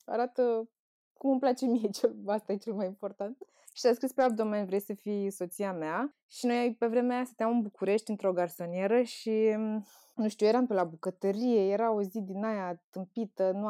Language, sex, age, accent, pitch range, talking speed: Romanian, female, 20-39, native, 205-270 Hz, 195 wpm